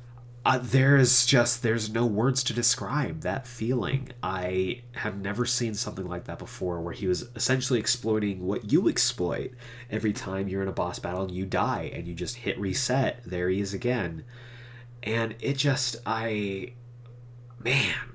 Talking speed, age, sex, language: 165 wpm, 30-49, male, English